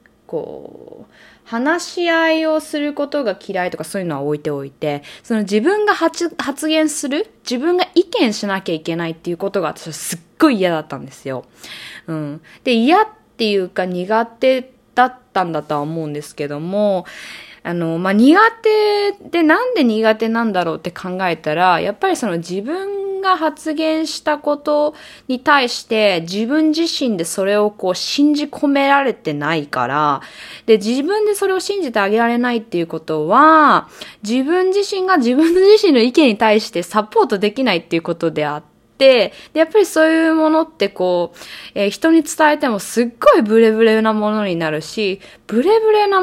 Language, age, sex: Japanese, 20-39, female